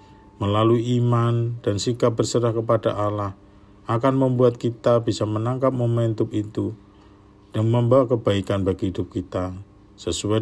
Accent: native